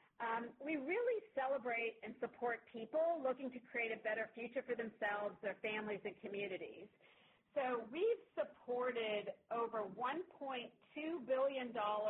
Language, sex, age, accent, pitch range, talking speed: English, female, 40-59, American, 210-270 Hz, 125 wpm